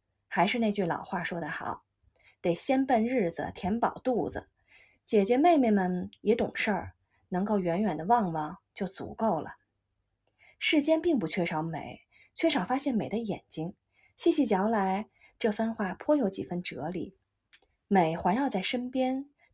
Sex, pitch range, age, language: female, 185-255 Hz, 20-39, Chinese